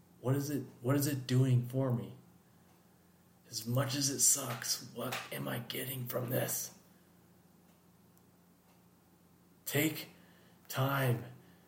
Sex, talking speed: male, 115 wpm